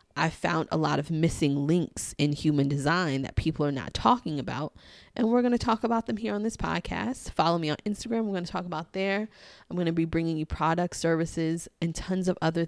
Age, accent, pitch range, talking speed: 20-39, American, 145-170 Hz, 230 wpm